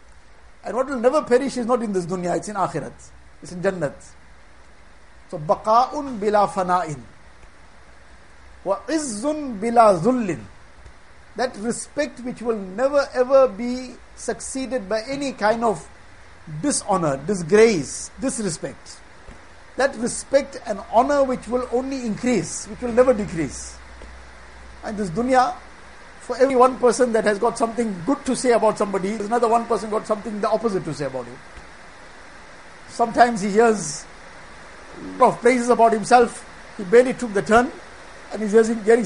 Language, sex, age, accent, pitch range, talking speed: English, male, 50-69, Indian, 155-245 Hz, 140 wpm